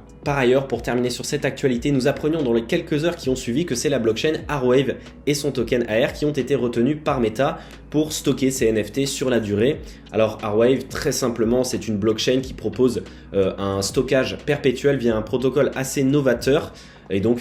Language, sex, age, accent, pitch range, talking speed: English, male, 20-39, French, 110-135 Hz, 200 wpm